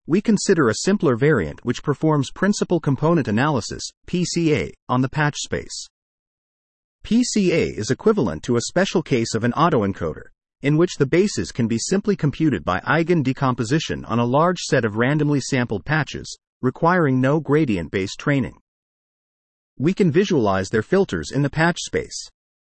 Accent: American